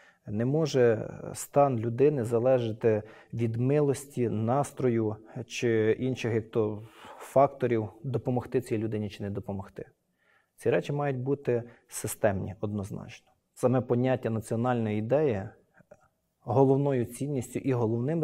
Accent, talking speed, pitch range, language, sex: native, 105 wpm, 110-130 Hz, Ukrainian, male